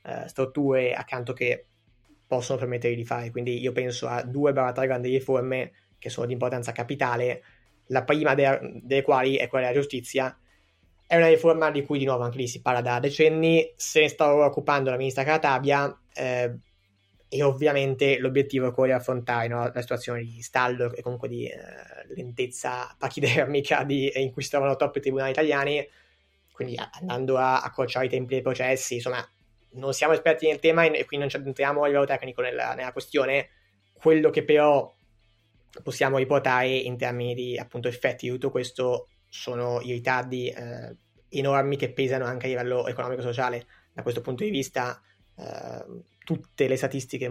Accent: native